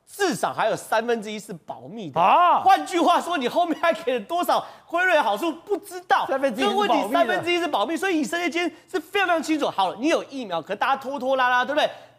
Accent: native